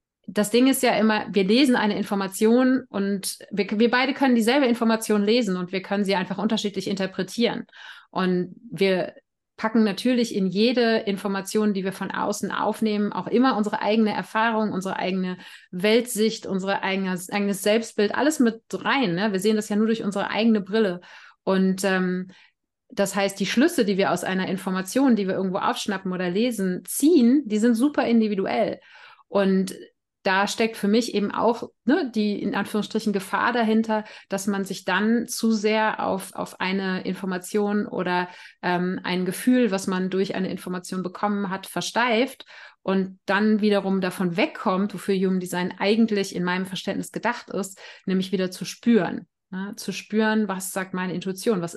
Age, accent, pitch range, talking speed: 30-49, German, 185-225 Hz, 165 wpm